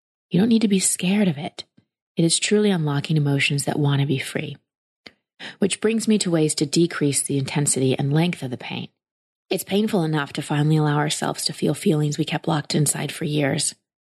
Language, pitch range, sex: English, 150-185 Hz, female